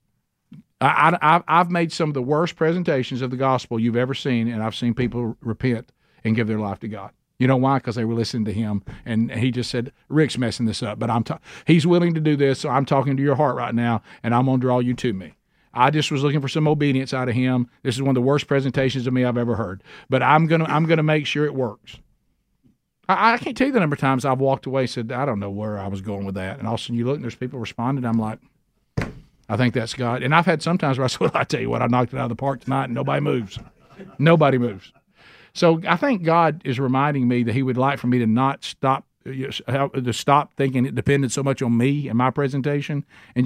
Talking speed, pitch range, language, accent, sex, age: 270 wpm, 120-145 Hz, English, American, male, 50-69